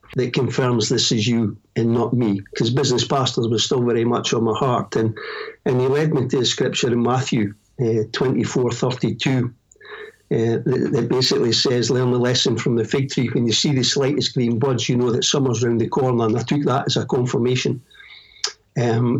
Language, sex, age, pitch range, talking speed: English, male, 60-79, 120-140 Hz, 215 wpm